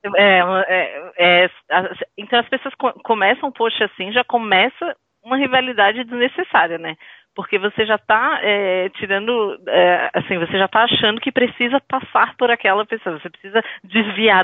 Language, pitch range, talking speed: Portuguese, 180-225 Hz, 165 wpm